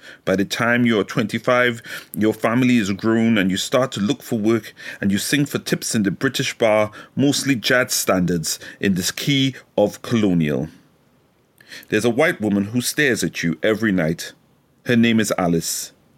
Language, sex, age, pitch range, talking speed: English, male, 40-59, 95-130 Hz, 180 wpm